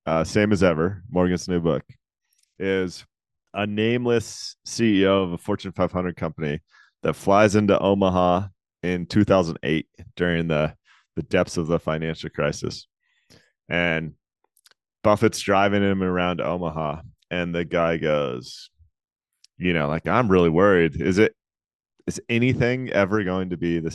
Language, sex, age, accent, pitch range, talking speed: English, male, 30-49, American, 85-110 Hz, 140 wpm